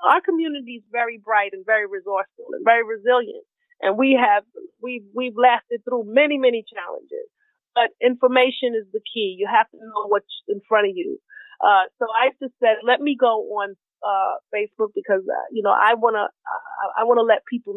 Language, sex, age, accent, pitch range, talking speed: English, female, 30-49, American, 210-260 Hz, 195 wpm